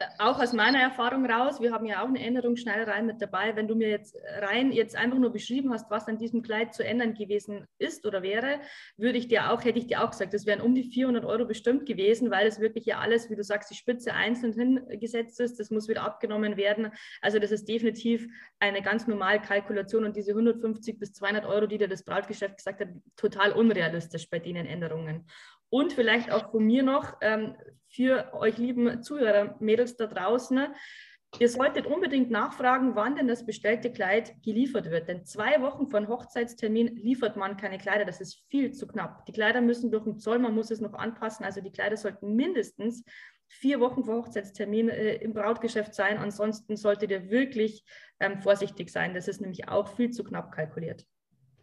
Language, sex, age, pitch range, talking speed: German, female, 20-39, 205-240 Hz, 200 wpm